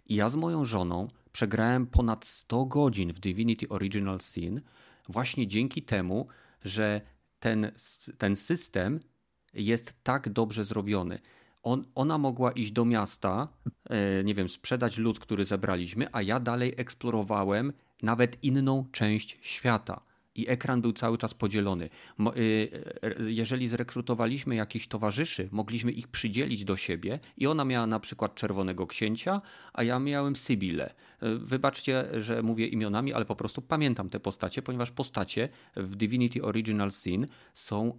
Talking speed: 135 wpm